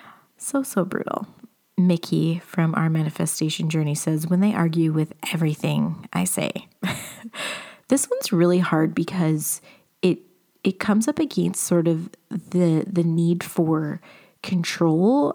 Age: 30-49